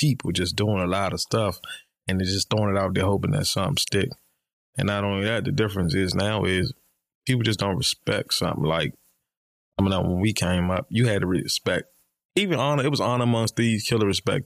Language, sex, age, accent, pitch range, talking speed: English, male, 20-39, American, 95-120 Hz, 220 wpm